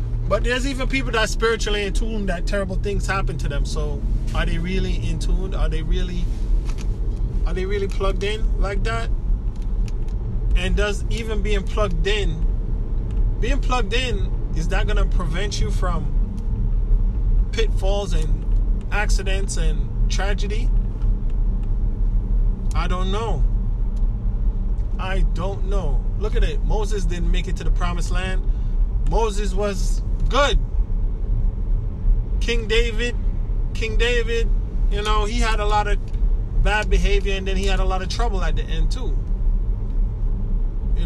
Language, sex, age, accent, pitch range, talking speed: English, male, 20-39, American, 100-110 Hz, 145 wpm